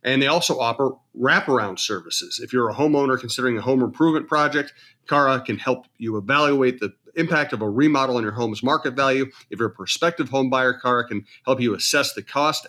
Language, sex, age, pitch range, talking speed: English, male, 40-59, 115-140 Hz, 205 wpm